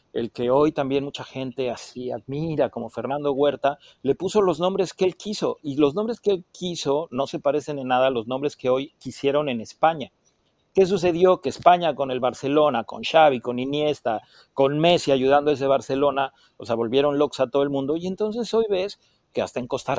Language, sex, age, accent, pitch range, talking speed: Spanish, male, 40-59, Mexican, 130-170 Hz, 210 wpm